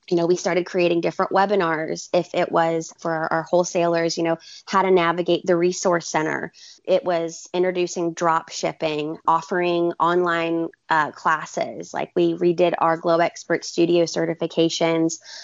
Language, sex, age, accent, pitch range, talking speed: English, female, 20-39, American, 165-190 Hz, 150 wpm